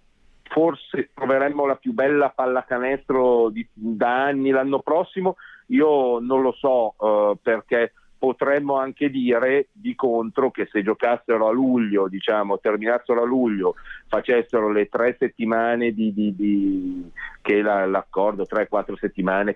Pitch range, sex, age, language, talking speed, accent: 100-130 Hz, male, 40-59, Italian, 130 wpm, native